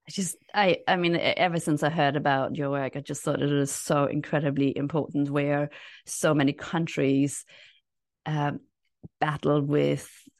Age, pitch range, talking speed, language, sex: 30-49, 145-180 Hz, 155 wpm, English, female